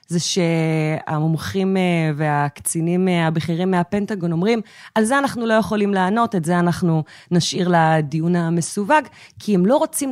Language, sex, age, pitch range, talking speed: Hebrew, female, 20-39, 165-195 Hz, 130 wpm